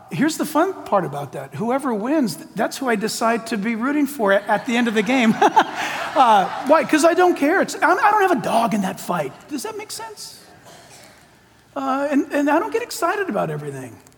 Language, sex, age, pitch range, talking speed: English, male, 40-59, 235-335 Hz, 215 wpm